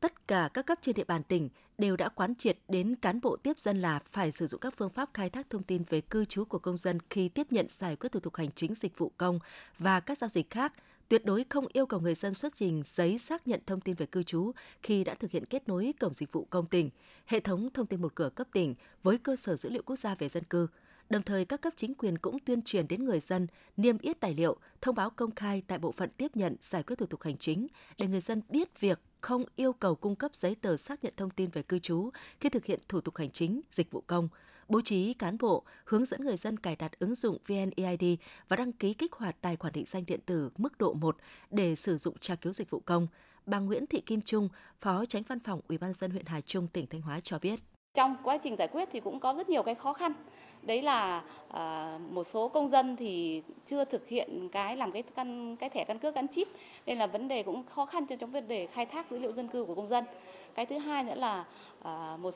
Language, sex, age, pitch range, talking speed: Vietnamese, female, 20-39, 180-250 Hz, 260 wpm